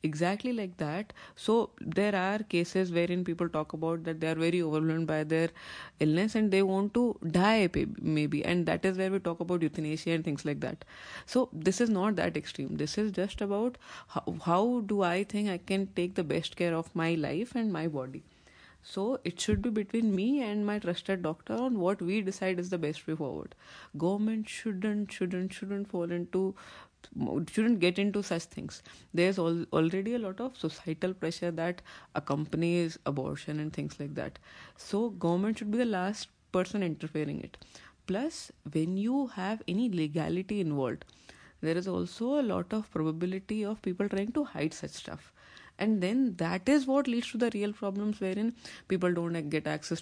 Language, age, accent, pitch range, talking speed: English, 30-49, Indian, 165-210 Hz, 185 wpm